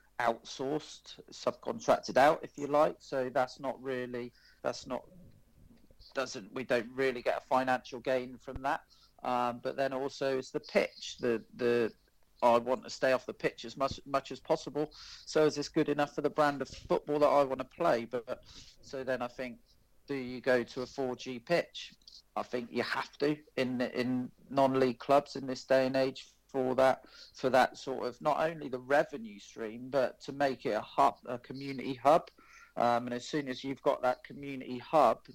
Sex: male